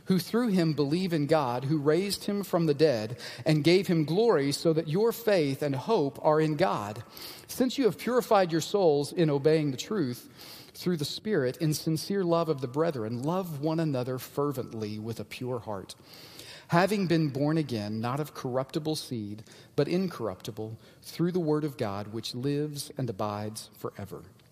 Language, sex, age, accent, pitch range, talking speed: English, male, 40-59, American, 120-160 Hz, 175 wpm